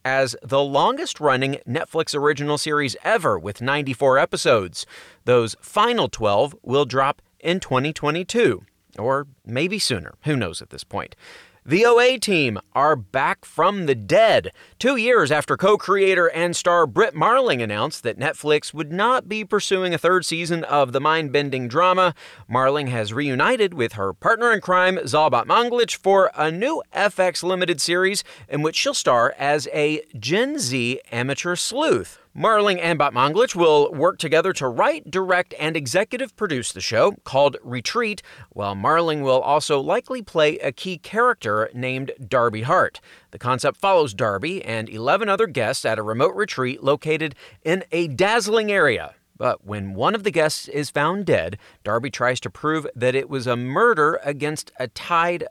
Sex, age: male, 30-49